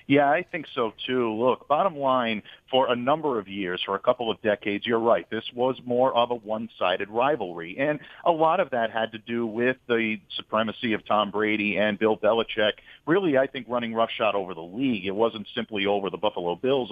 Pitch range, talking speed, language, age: 105-125 Hz, 210 wpm, English, 40-59